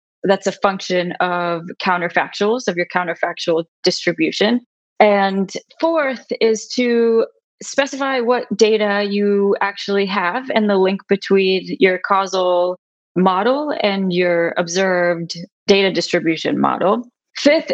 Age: 20-39